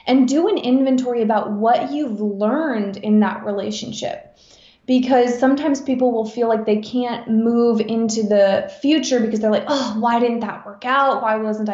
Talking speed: 175 wpm